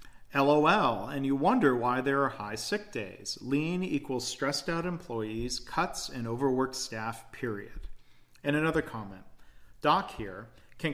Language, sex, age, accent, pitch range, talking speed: English, male, 40-59, American, 115-140 Hz, 145 wpm